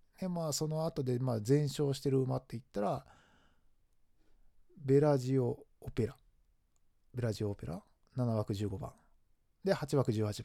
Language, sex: Japanese, male